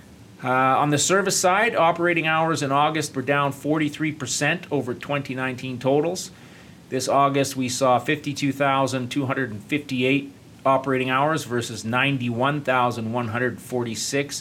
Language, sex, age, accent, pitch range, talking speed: English, male, 30-49, American, 115-140 Hz, 100 wpm